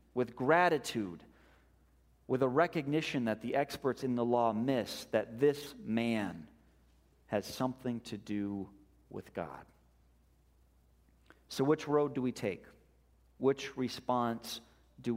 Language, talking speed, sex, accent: English, 120 wpm, male, American